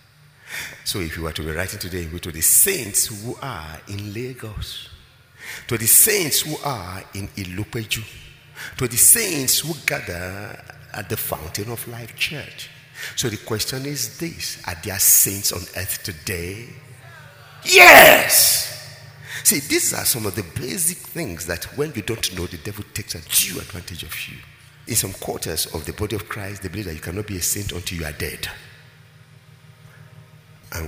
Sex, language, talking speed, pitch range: male, English, 170 wpm, 90-140 Hz